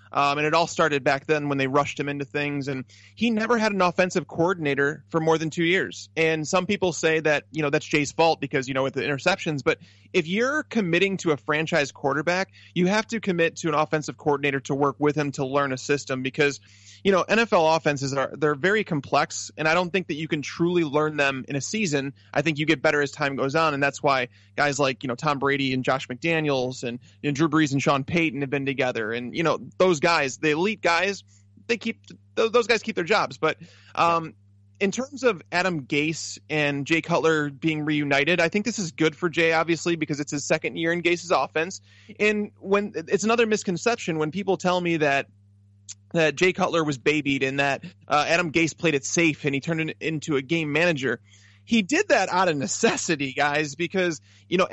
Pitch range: 140-175 Hz